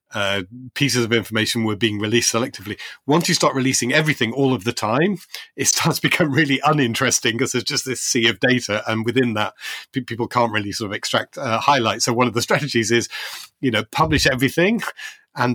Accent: British